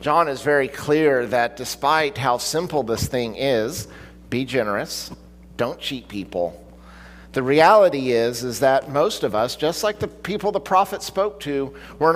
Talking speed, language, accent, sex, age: 165 wpm, English, American, male, 50-69